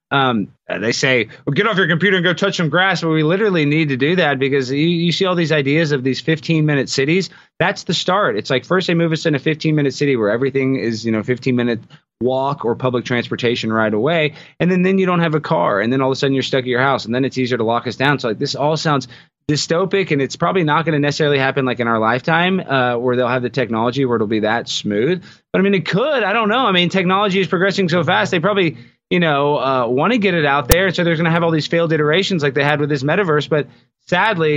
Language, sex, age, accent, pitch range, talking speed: English, male, 30-49, American, 125-160 Hz, 275 wpm